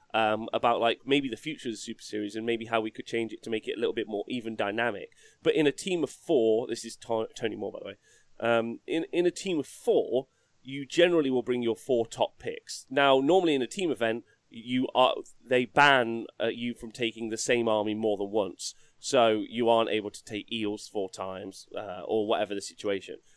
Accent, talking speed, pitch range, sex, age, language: British, 225 wpm, 110-130 Hz, male, 30-49, English